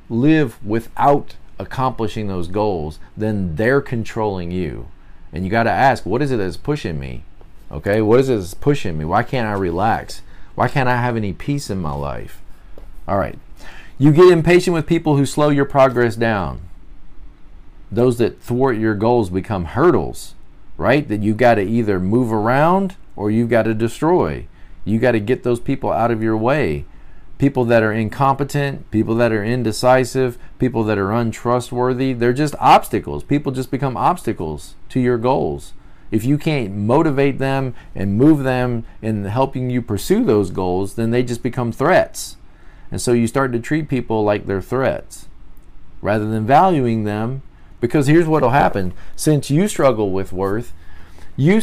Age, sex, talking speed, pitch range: 40-59, male, 170 wpm, 100-135 Hz